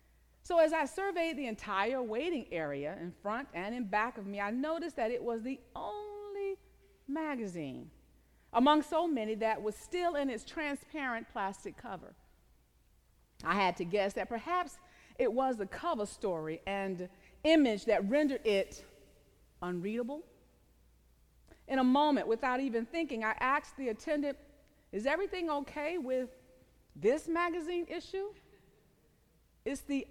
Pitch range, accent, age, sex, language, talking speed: 215-315 Hz, American, 40-59, female, English, 140 wpm